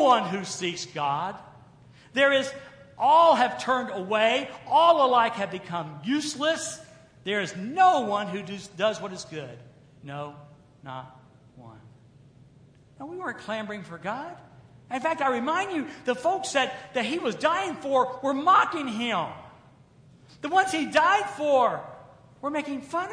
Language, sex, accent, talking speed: English, male, American, 150 wpm